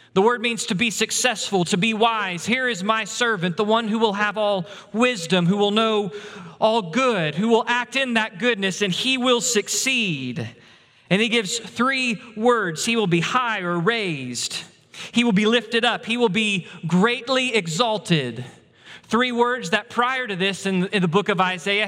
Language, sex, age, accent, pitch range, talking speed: English, male, 30-49, American, 175-220 Hz, 185 wpm